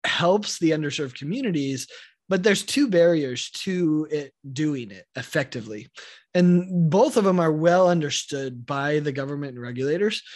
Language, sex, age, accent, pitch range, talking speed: English, male, 20-39, American, 140-175 Hz, 145 wpm